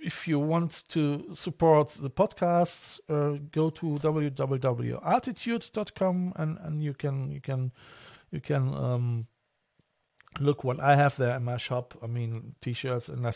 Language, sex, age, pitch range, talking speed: English, male, 50-69, 125-165 Hz, 150 wpm